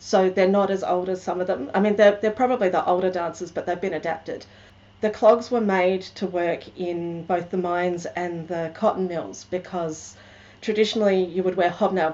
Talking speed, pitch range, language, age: 205 wpm, 170-200 Hz, English, 40-59